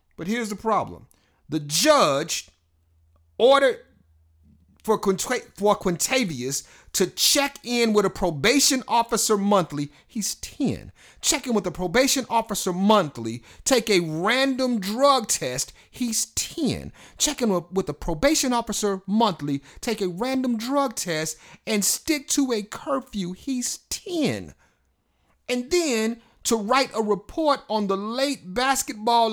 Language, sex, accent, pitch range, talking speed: English, male, American, 195-275 Hz, 125 wpm